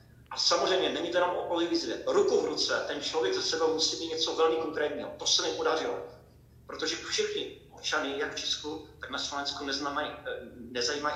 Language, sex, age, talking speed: Slovak, male, 50-69, 175 wpm